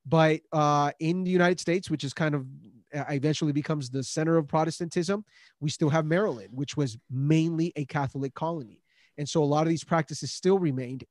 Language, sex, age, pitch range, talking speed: English, male, 30-49, 140-170 Hz, 190 wpm